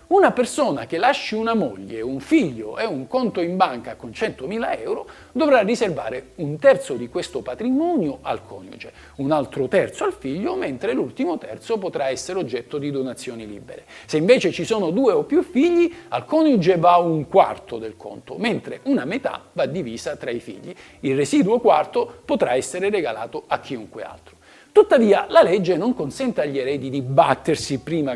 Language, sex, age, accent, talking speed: Italian, male, 50-69, native, 175 wpm